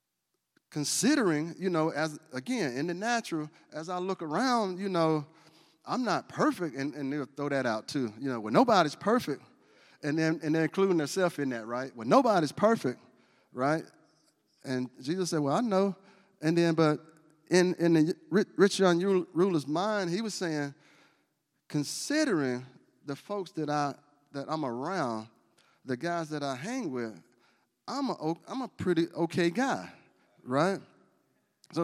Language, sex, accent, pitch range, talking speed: English, male, American, 145-185 Hz, 160 wpm